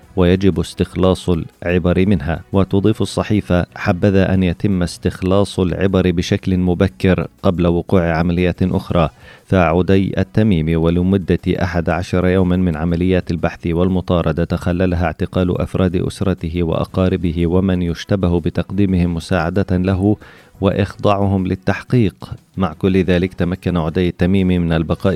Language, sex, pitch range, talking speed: Arabic, male, 85-95 Hz, 110 wpm